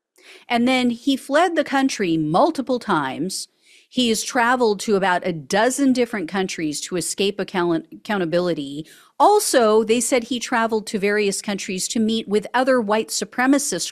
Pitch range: 175-250 Hz